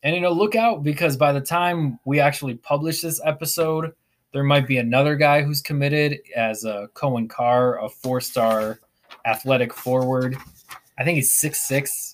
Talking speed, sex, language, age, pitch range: 160 wpm, male, English, 20-39, 120-145 Hz